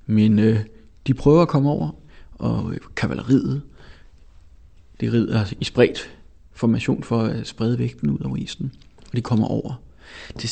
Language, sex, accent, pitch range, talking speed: English, male, Danish, 80-120 Hz, 145 wpm